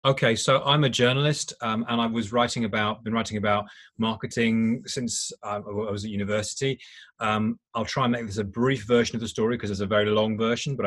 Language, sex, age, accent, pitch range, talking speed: English, male, 30-49, British, 110-130 Hz, 215 wpm